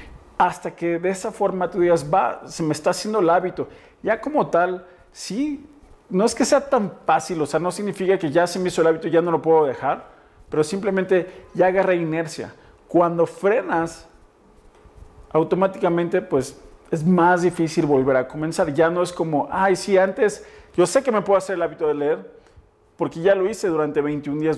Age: 40-59